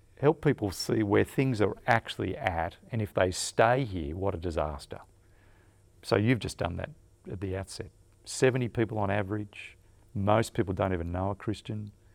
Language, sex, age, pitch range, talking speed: English, male, 50-69, 90-105 Hz, 175 wpm